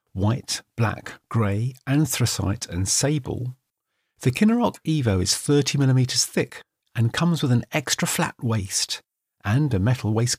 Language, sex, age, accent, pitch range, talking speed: English, male, 50-69, British, 100-125 Hz, 135 wpm